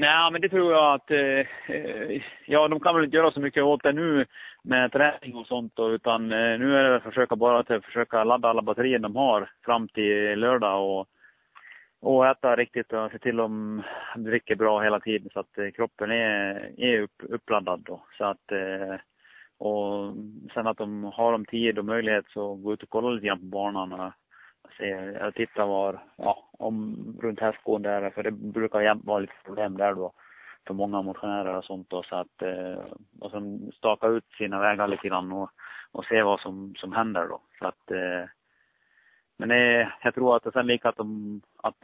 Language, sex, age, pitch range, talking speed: Swedish, male, 30-49, 100-120 Hz, 190 wpm